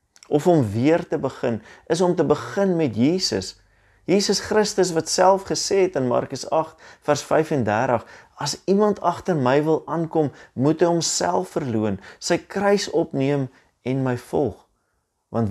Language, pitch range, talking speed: English, 110-150 Hz, 145 wpm